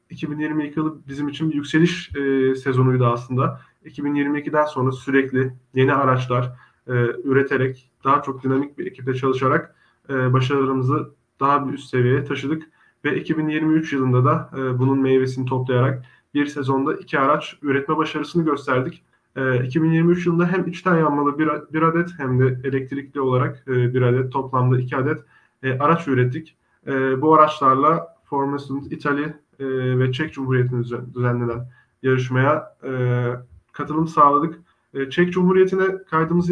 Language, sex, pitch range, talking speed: Turkish, male, 130-150 Hz, 140 wpm